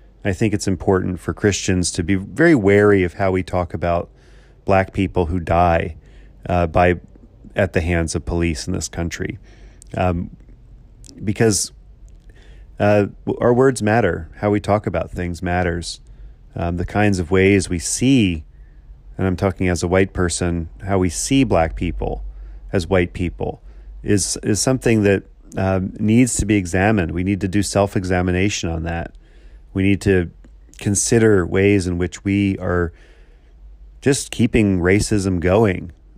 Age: 40-59